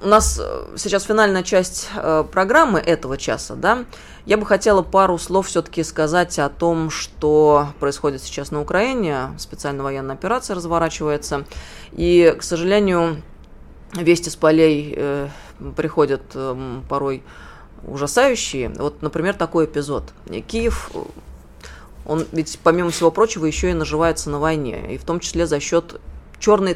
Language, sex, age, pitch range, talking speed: Russian, female, 20-39, 145-185 Hz, 130 wpm